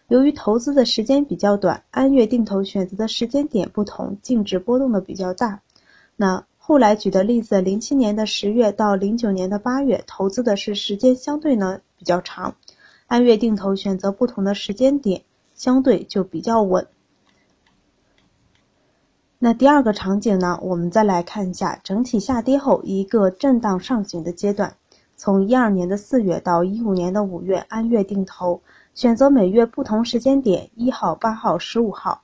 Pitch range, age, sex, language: 190-255 Hz, 20-39, female, Chinese